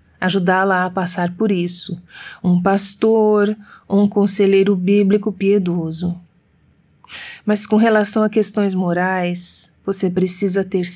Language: Portuguese